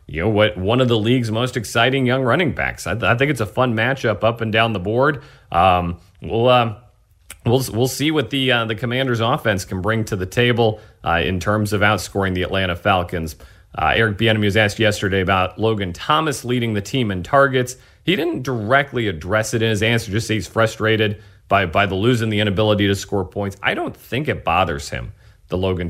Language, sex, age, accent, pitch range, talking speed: English, male, 40-59, American, 90-115 Hz, 215 wpm